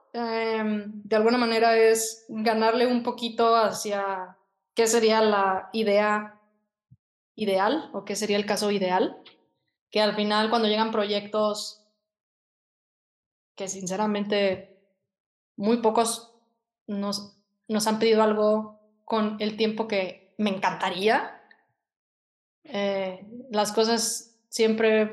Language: Spanish